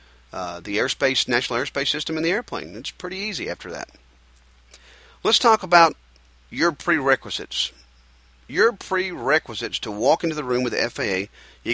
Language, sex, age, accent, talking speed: English, male, 40-59, American, 145 wpm